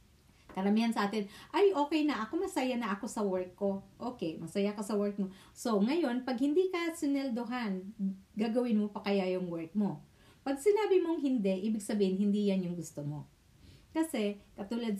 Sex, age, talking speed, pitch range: female, 40-59, 180 wpm, 195-295 Hz